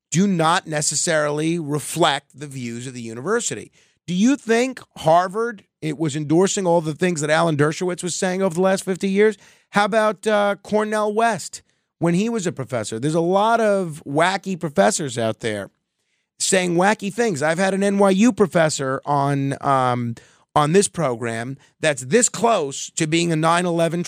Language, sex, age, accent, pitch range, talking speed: English, male, 30-49, American, 130-185 Hz, 165 wpm